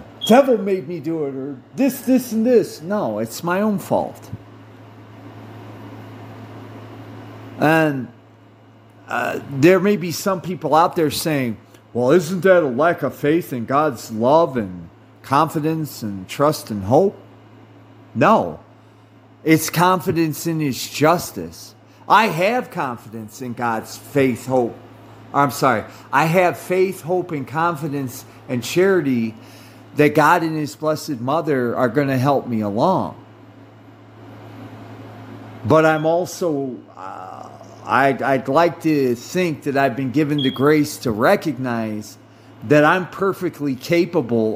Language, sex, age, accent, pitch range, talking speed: English, male, 50-69, American, 115-155 Hz, 130 wpm